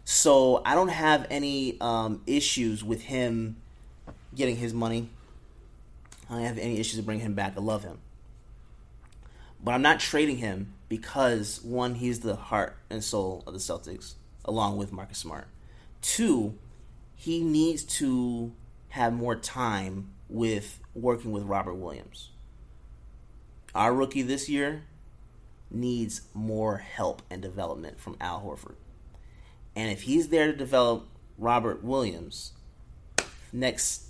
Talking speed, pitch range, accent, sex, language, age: 135 wpm, 95-120 Hz, American, male, English, 30-49